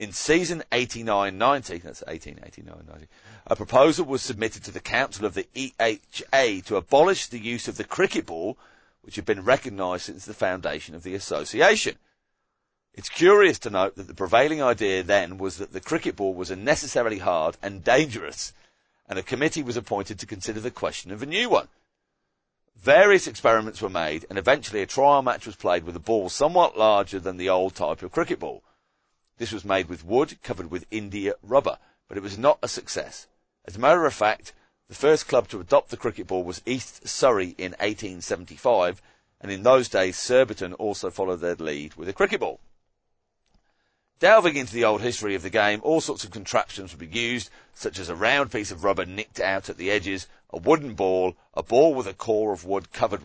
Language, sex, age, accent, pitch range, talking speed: English, male, 40-59, British, 95-120 Hz, 195 wpm